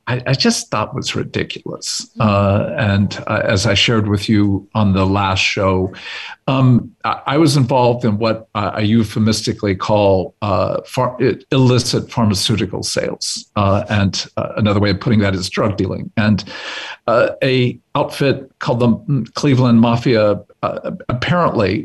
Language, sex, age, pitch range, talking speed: English, male, 50-69, 105-130 Hz, 150 wpm